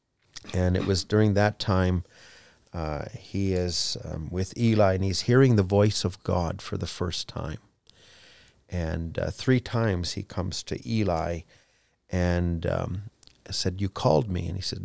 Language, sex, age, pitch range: English, male, 50-69, 90-110 Hz